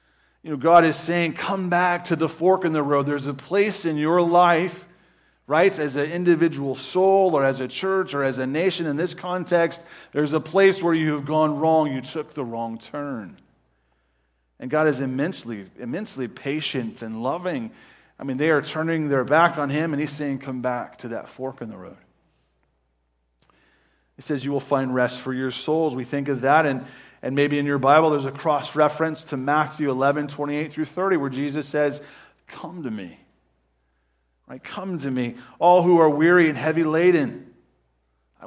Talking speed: 195 wpm